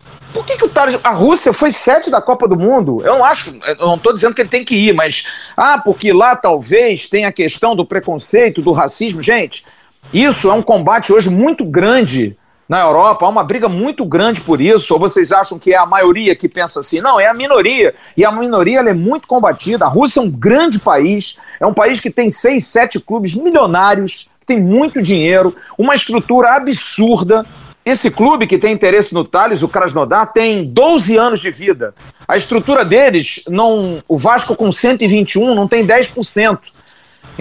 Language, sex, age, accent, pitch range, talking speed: Portuguese, male, 40-59, Brazilian, 195-255 Hz, 195 wpm